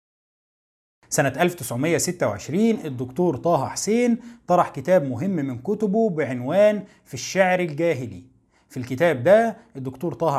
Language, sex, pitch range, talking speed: Arabic, male, 150-215 Hz, 110 wpm